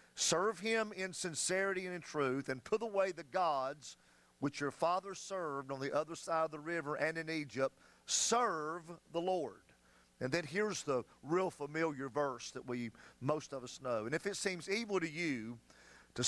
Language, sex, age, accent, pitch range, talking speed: English, male, 40-59, American, 120-165 Hz, 185 wpm